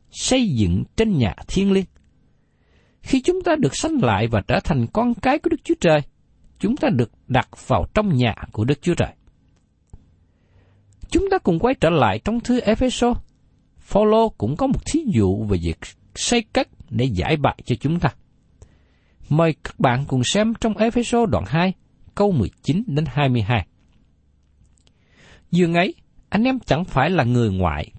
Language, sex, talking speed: Vietnamese, male, 175 wpm